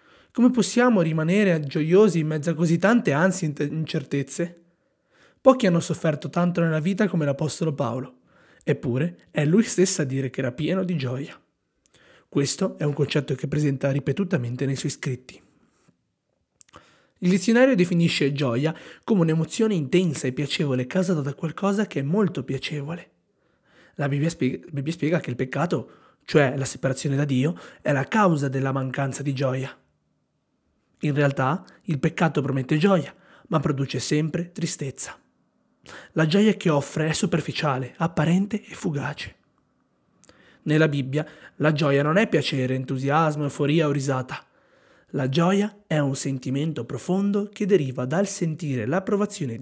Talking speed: 140 wpm